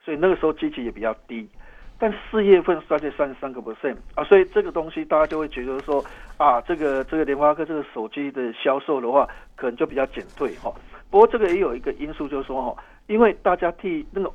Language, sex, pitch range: Chinese, male, 150-220 Hz